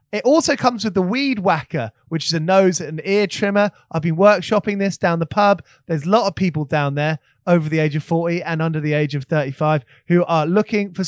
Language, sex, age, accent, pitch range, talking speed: English, male, 20-39, British, 160-215 Hz, 235 wpm